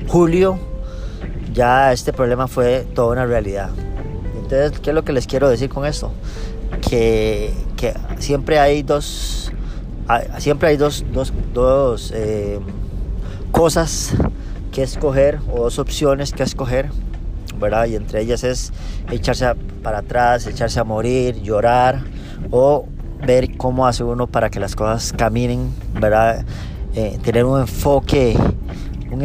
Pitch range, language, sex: 110-135 Hz, Spanish, male